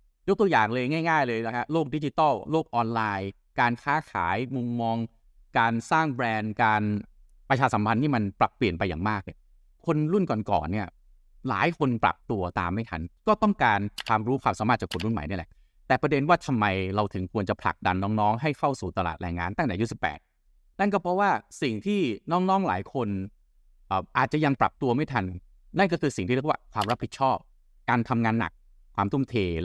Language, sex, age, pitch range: Thai, male, 30-49, 95-140 Hz